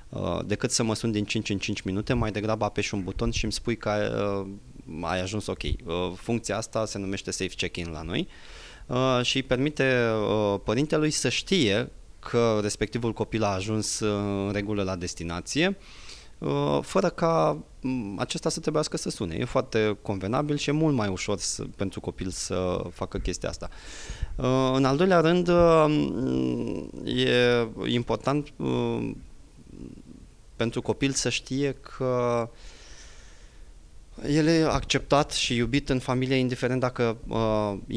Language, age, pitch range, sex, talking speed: Romanian, 20-39, 100-125 Hz, male, 140 wpm